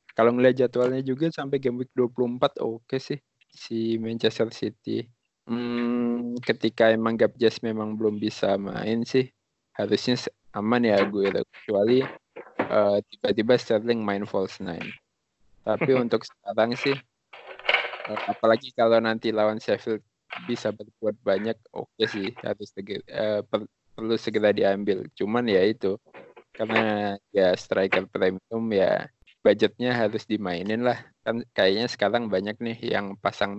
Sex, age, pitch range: male, 20-39, 105-120 Hz